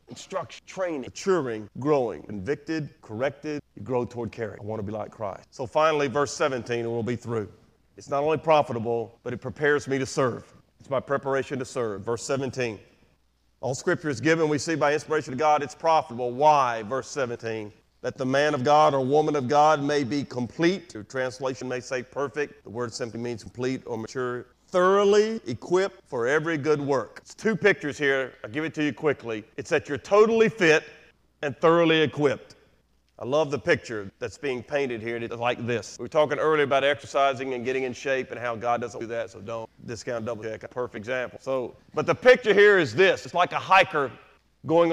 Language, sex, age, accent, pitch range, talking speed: English, male, 40-59, American, 120-155 Hz, 200 wpm